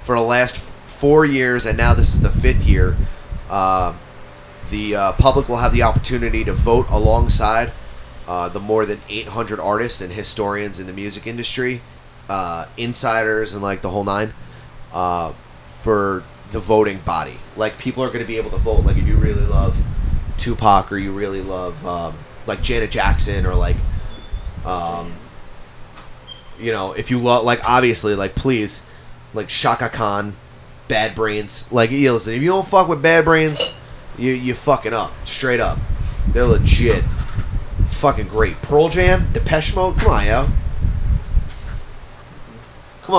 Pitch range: 90-115 Hz